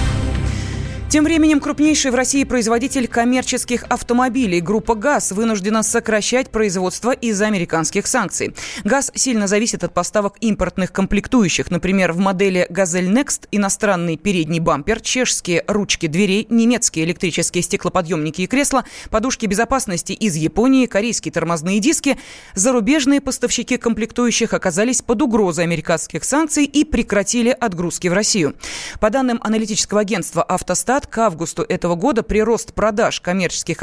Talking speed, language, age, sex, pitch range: 125 wpm, Russian, 20-39, female, 180-245 Hz